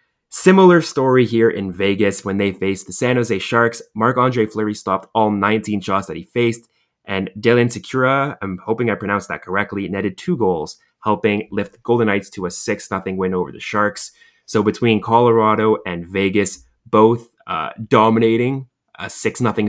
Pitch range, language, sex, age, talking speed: 95-115 Hz, English, male, 20-39, 170 wpm